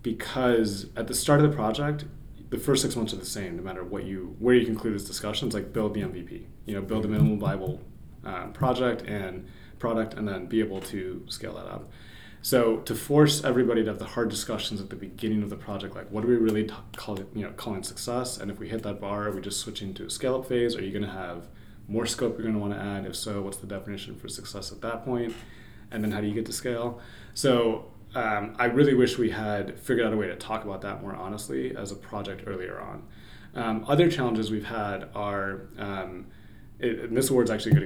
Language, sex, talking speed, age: English, male, 240 wpm, 20-39